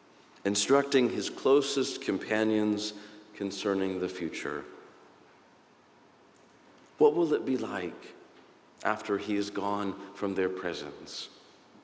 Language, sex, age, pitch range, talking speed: English, male, 40-59, 105-140 Hz, 95 wpm